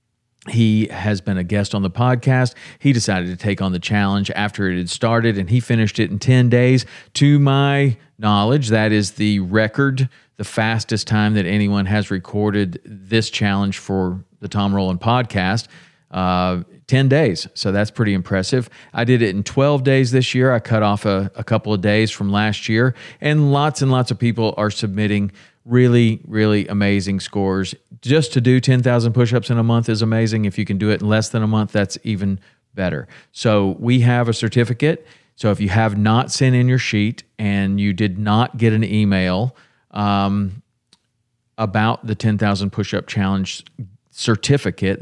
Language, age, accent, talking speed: English, 40-59, American, 180 wpm